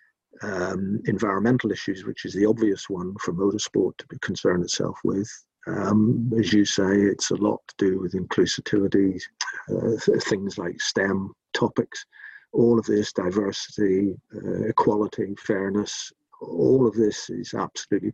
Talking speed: 140 wpm